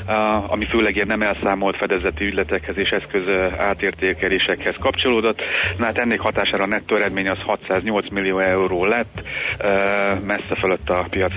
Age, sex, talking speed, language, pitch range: 30-49, male, 150 wpm, Hungarian, 95-110 Hz